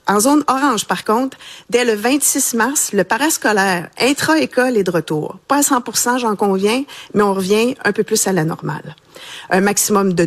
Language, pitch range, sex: French, 180-225 Hz, female